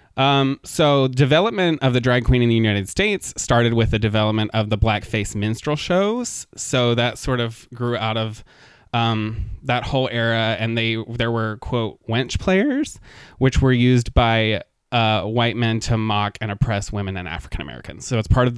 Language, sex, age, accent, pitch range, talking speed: English, male, 20-39, American, 110-125 Hz, 180 wpm